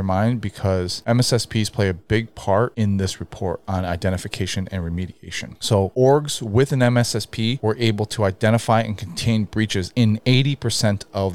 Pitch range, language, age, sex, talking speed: 95-115 Hz, English, 30-49, male, 160 wpm